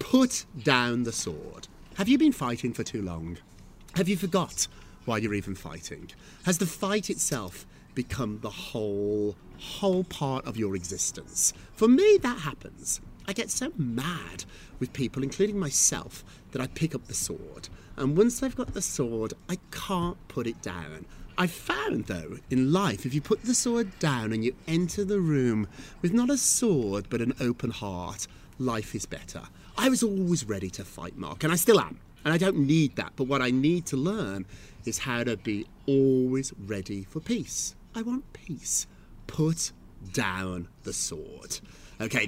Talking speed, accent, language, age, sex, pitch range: 175 wpm, British, English, 30-49, male, 110-180 Hz